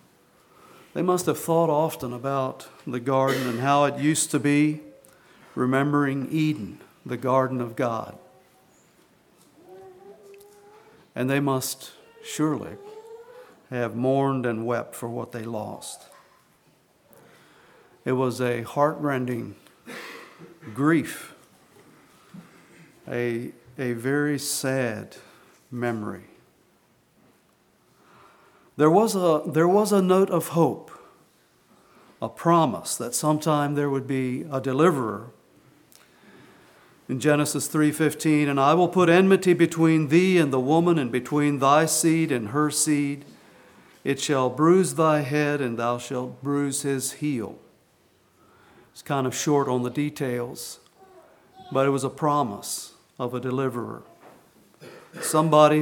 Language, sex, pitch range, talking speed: English, male, 130-160 Hz, 115 wpm